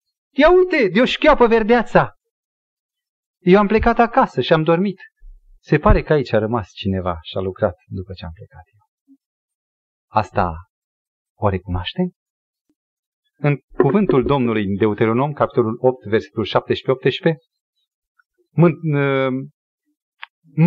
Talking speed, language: 115 wpm, Romanian